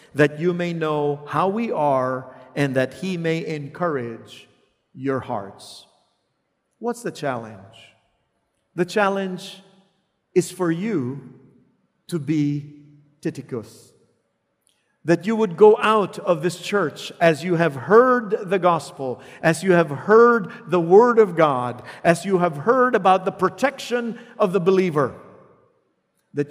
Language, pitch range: English, 135-190 Hz